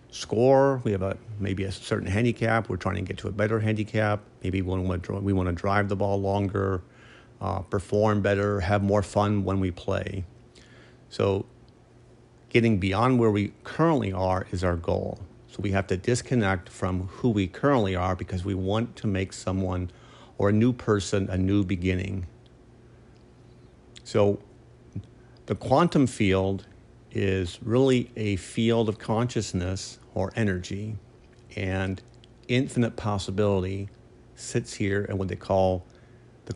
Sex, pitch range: male, 95-115 Hz